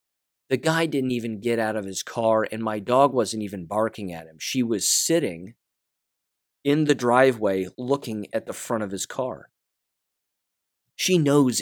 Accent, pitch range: American, 110-160 Hz